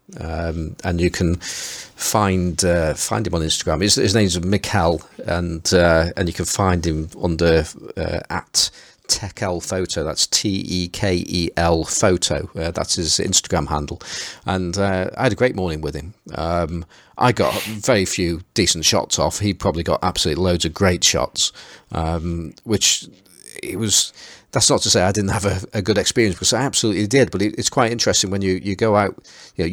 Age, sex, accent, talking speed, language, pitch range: 40-59, male, British, 180 wpm, English, 85-105 Hz